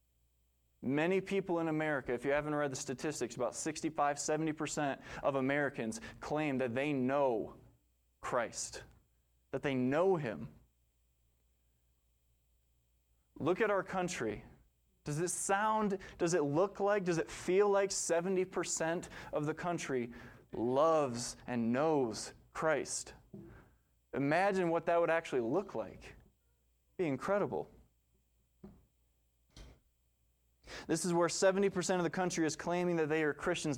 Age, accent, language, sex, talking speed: 20-39, American, English, male, 125 wpm